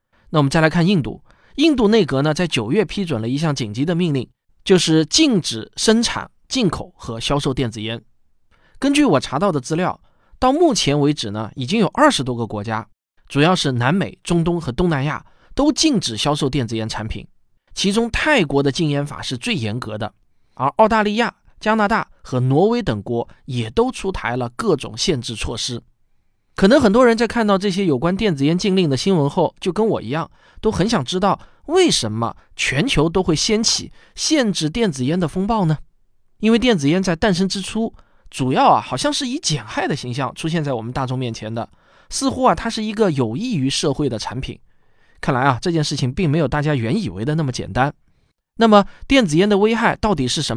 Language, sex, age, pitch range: Chinese, male, 20-39, 125-205 Hz